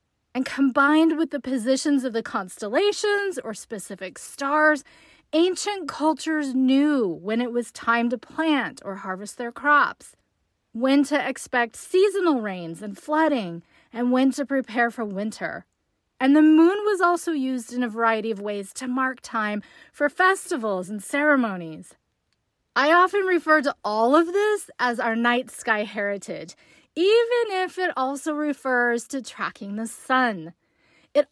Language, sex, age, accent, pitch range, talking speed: English, female, 30-49, American, 230-310 Hz, 150 wpm